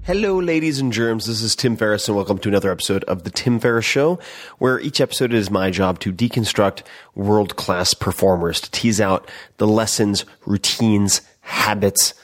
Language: English